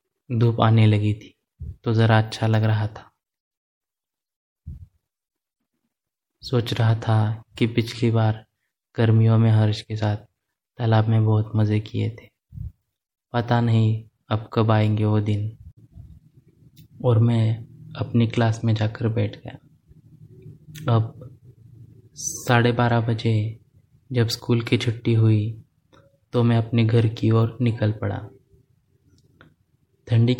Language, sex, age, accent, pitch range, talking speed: Hindi, male, 20-39, native, 110-130 Hz, 120 wpm